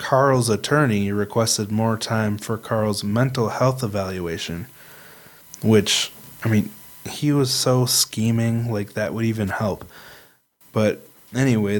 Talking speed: 120 wpm